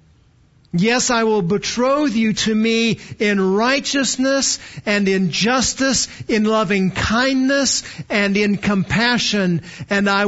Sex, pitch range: male, 135-200 Hz